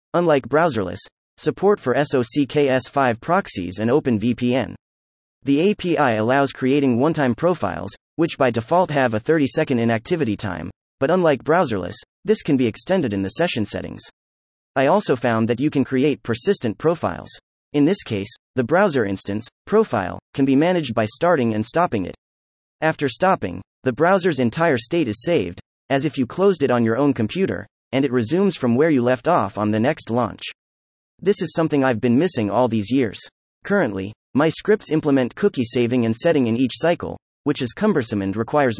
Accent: American